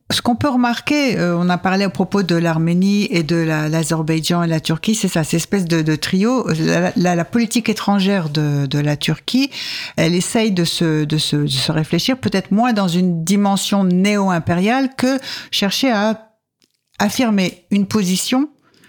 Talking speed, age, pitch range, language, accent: 175 wpm, 60-79, 160-205 Hz, French, French